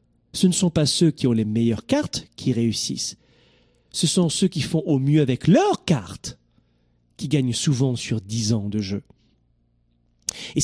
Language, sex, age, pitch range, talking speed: French, male, 40-59, 110-165 Hz, 175 wpm